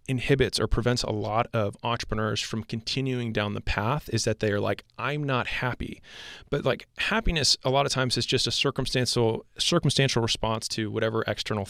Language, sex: English, male